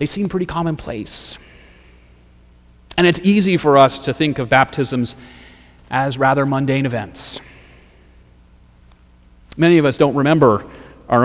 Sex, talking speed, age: male, 125 wpm, 30-49